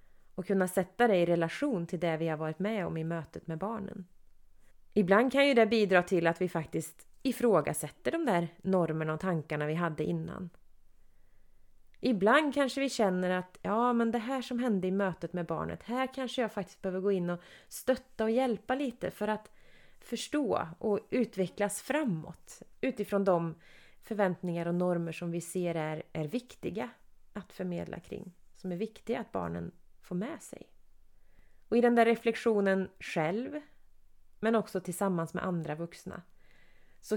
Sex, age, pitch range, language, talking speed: female, 30-49, 175-225 Hz, Swedish, 165 wpm